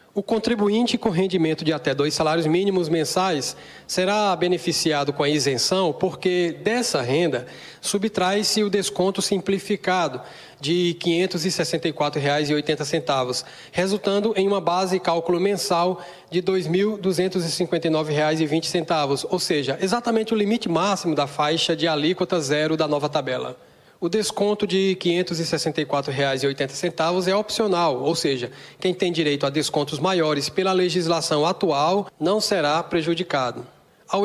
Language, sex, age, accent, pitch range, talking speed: Portuguese, male, 20-39, Brazilian, 155-185 Hz, 130 wpm